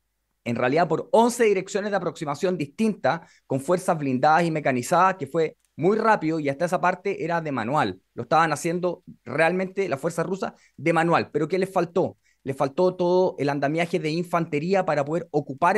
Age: 30-49